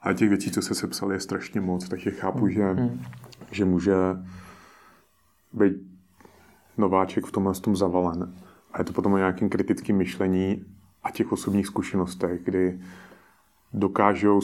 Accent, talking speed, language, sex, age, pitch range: native, 140 wpm, Czech, male, 30-49, 90-100 Hz